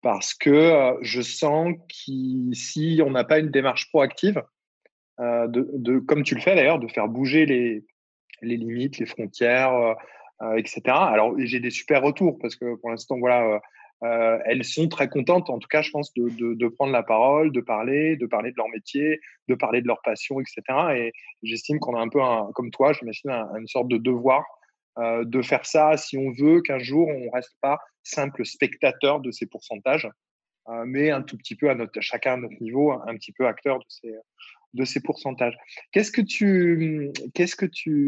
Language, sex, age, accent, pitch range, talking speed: French, male, 20-39, French, 120-145 Hz, 205 wpm